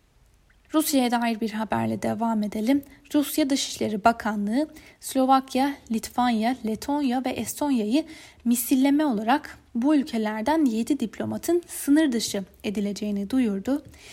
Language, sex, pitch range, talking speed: Turkish, female, 210-265 Hz, 100 wpm